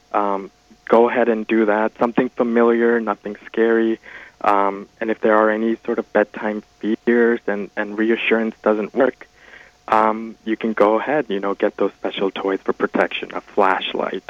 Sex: male